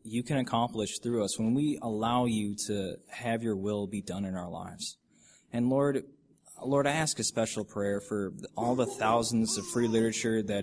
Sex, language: male, English